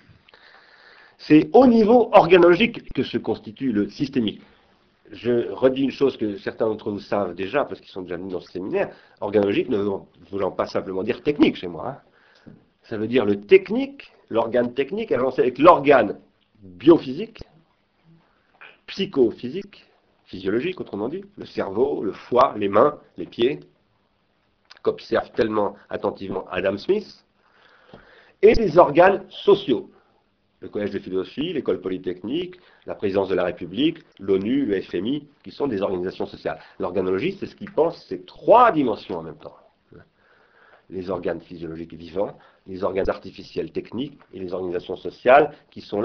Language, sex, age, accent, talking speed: French, male, 40-59, French, 150 wpm